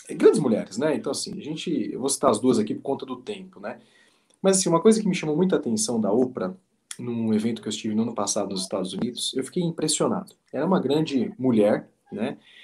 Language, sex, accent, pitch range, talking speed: Portuguese, male, Brazilian, 145-215 Hz, 235 wpm